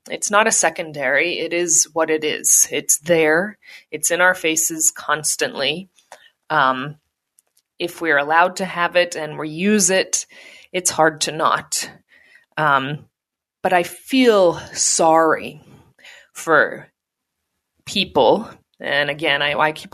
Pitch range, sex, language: 155-185 Hz, female, English